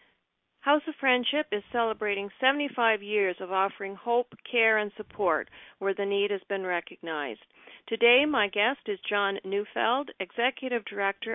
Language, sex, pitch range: English, female, 190-240 Hz